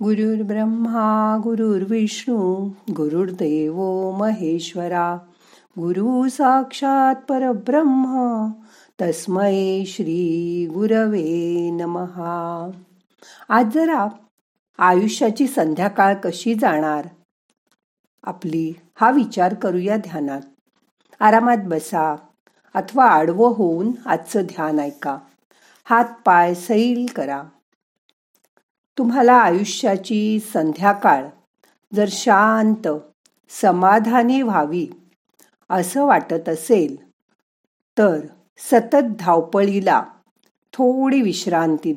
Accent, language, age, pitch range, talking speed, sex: native, Marathi, 50-69, 170-225 Hz, 65 wpm, female